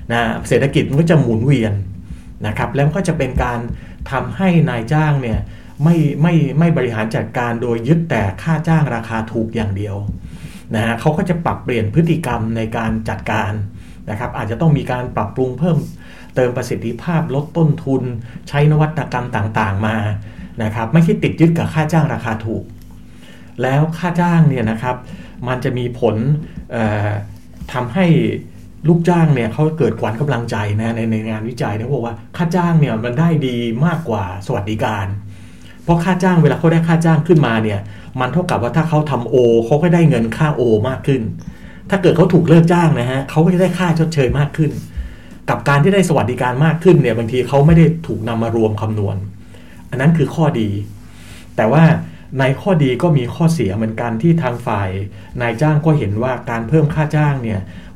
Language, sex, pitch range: English, male, 110-160 Hz